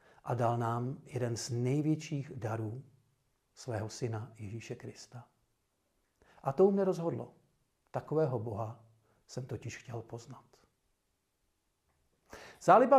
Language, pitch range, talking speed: Czech, 120-150 Hz, 100 wpm